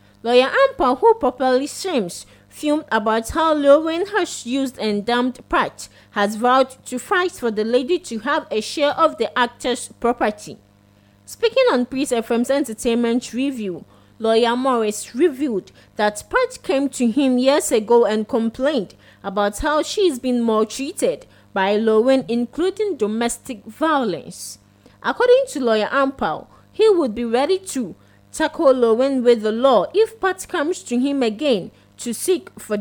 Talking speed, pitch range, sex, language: 145 wpm, 215-290 Hz, female, English